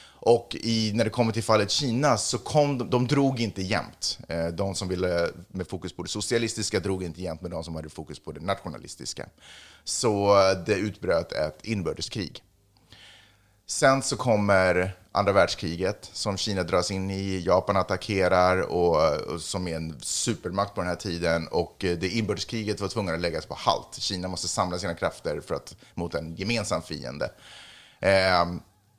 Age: 30-49